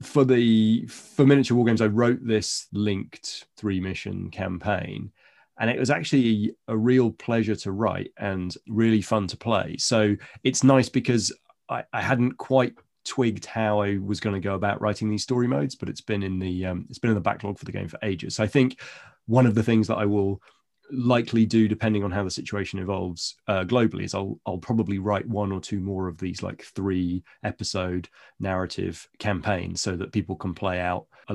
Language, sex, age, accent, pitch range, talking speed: English, male, 30-49, British, 95-115 Hz, 205 wpm